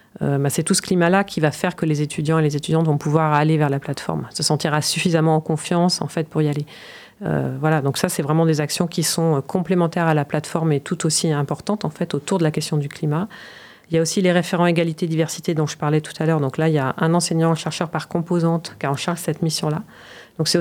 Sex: female